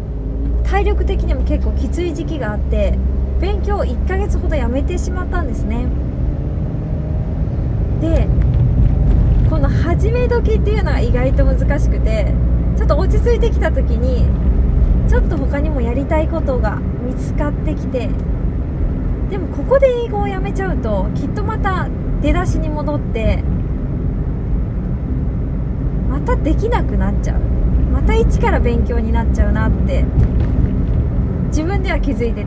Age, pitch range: 20-39, 65-70 Hz